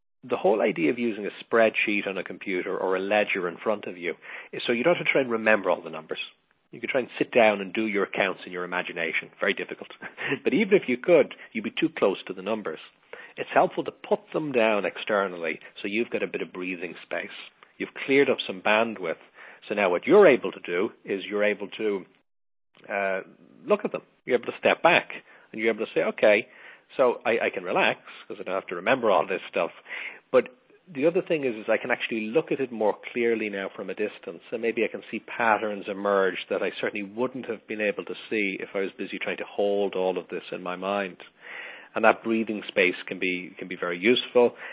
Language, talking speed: English, 230 wpm